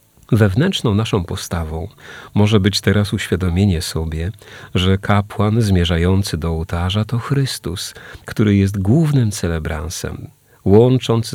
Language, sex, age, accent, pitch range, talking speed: Polish, male, 40-59, native, 90-115 Hz, 105 wpm